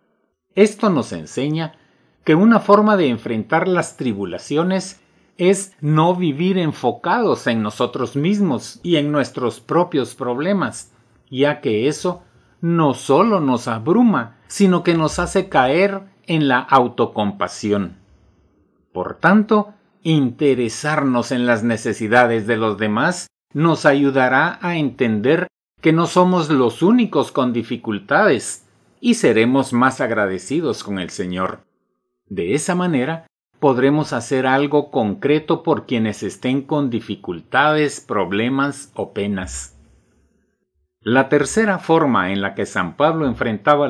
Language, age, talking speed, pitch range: Spanish, 50-69, 120 wpm, 120-170 Hz